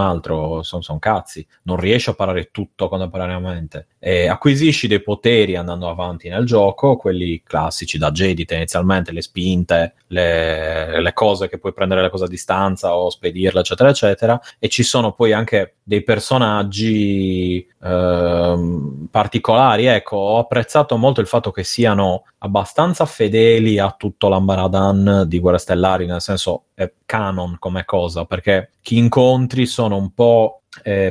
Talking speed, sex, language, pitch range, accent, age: 145 wpm, male, Italian, 90-115 Hz, native, 30-49